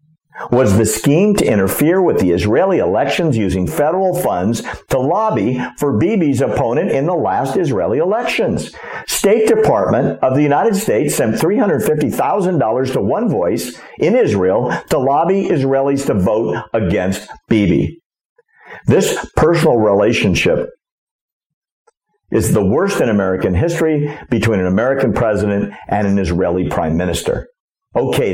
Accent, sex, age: American, male, 50-69